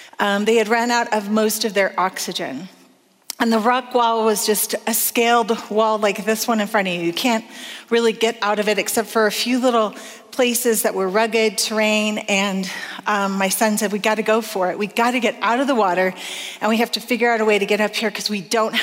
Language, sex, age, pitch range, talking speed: English, female, 30-49, 200-235 Hz, 240 wpm